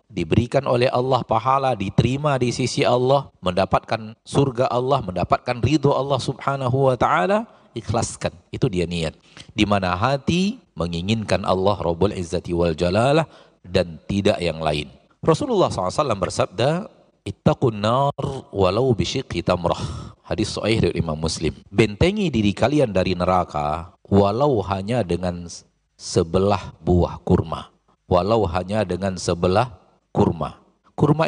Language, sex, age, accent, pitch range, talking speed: Indonesian, male, 40-59, native, 90-135 Hz, 120 wpm